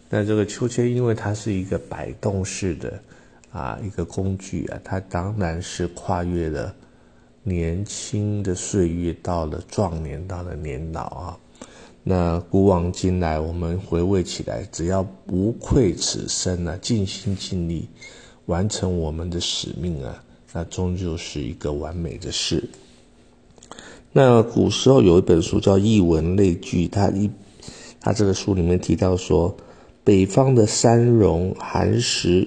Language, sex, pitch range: Chinese, male, 85-105 Hz